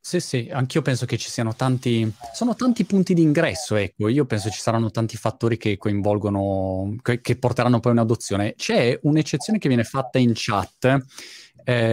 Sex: male